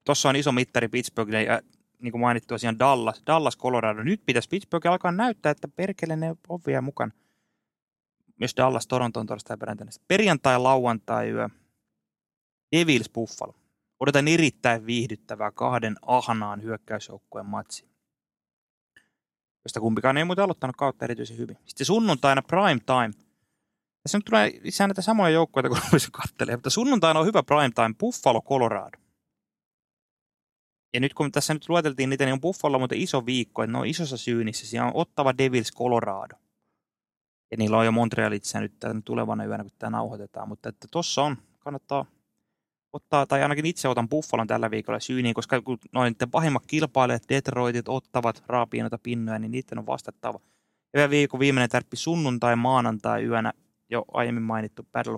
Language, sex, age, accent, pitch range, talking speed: Finnish, male, 20-39, native, 115-145 Hz, 150 wpm